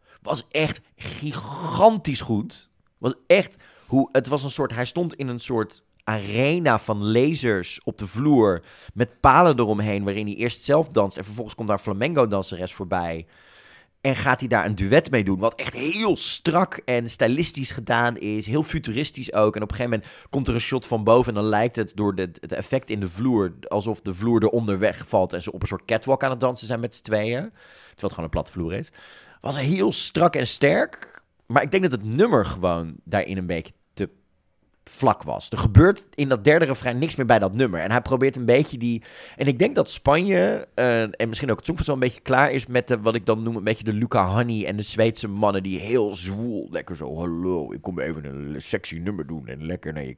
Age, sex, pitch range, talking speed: 30-49, male, 100-135 Hz, 225 wpm